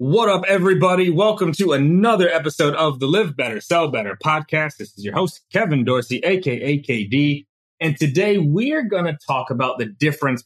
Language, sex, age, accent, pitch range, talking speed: English, male, 30-49, American, 125-175 Hz, 180 wpm